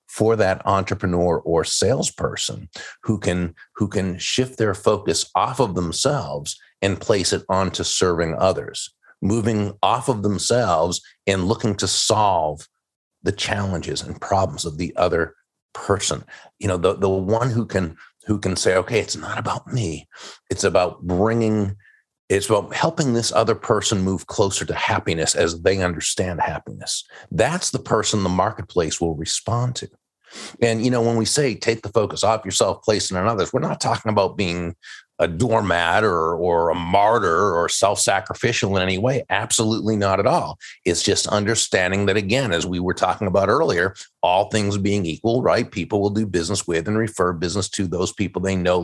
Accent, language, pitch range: American, English, 95-115 Hz